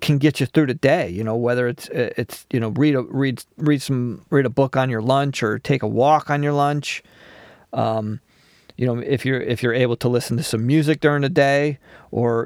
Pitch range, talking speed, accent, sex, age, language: 110-140 Hz, 230 wpm, American, male, 40-59, English